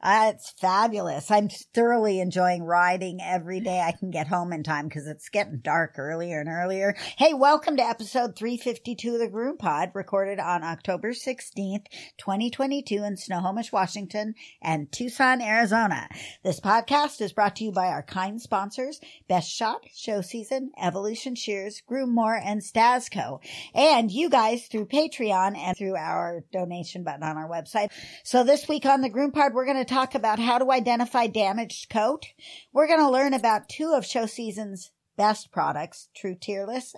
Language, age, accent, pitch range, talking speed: English, 50-69, American, 195-265 Hz, 175 wpm